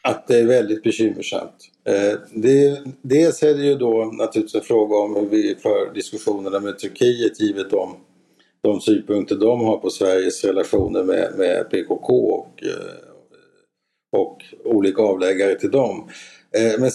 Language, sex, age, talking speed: Swedish, male, 50-69, 140 wpm